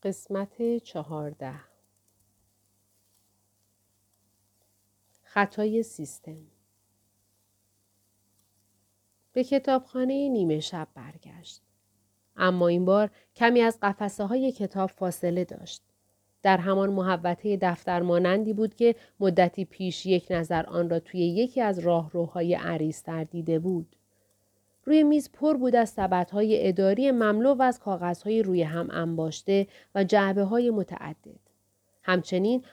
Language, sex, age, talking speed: Persian, female, 40-59, 105 wpm